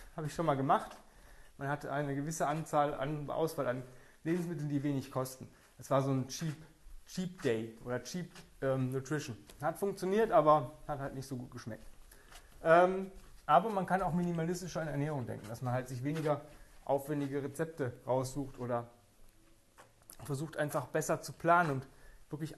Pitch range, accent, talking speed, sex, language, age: 130-175 Hz, German, 165 wpm, male, German, 30-49